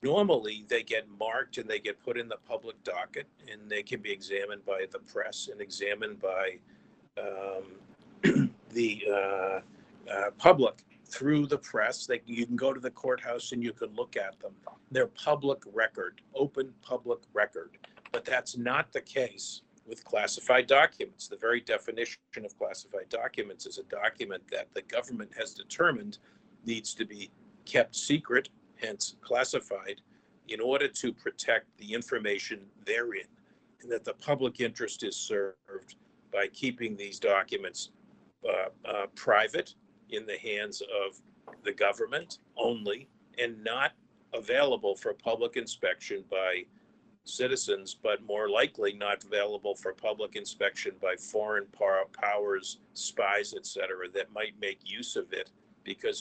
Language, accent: English, American